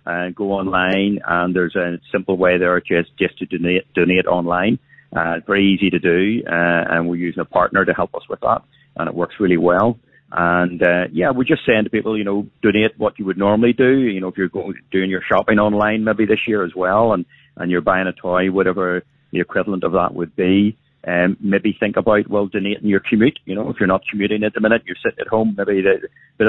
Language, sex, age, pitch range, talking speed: English, male, 30-49, 90-105 Hz, 240 wpm